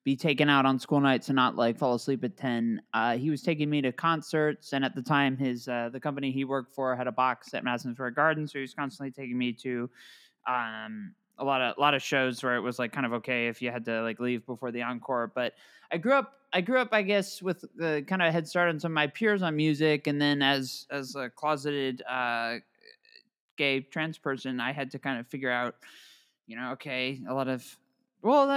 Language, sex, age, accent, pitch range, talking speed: English, male, 20-39, American, 125-180 Hz, 245 wpm